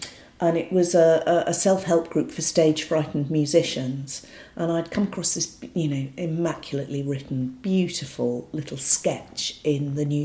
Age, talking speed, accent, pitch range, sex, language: 50-69, 145 wpm, British, 135-175 Hz, female, English